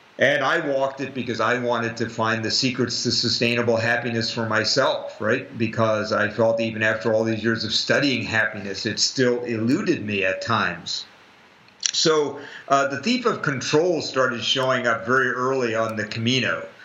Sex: male